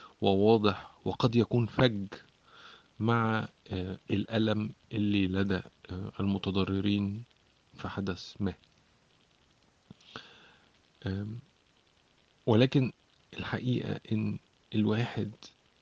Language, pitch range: Arabic, 95-115 Hz